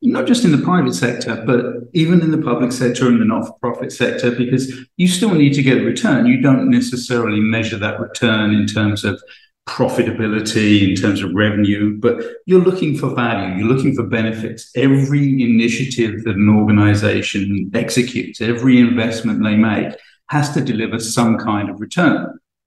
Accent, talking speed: British, 170 wpm